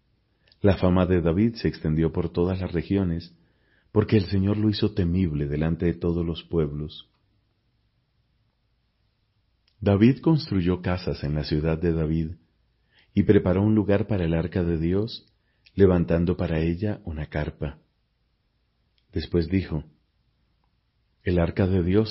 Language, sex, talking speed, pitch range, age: Spanish, male, 135 wpm, 80-100 Hz, 40-59